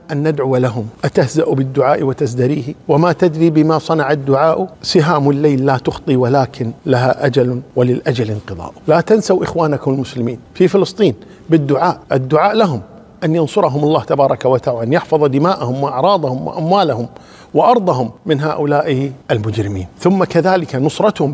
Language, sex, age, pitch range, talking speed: Arabic, male, 50-69, 135-170 Hz, 130 wpm